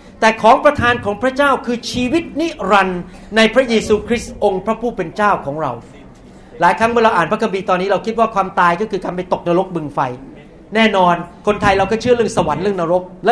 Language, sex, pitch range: Thai, male, 190-240 Hz